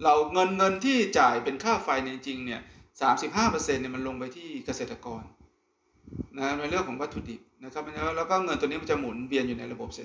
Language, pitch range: Thai, 130-165 Hz